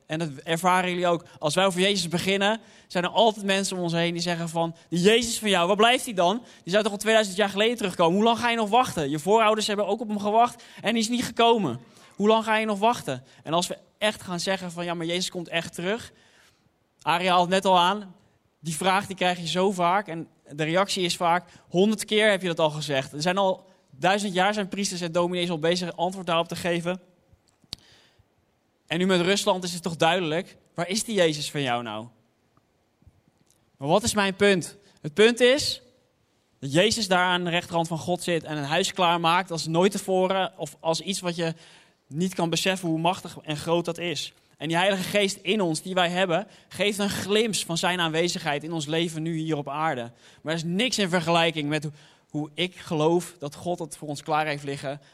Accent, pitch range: Dutch, 160-195 Hz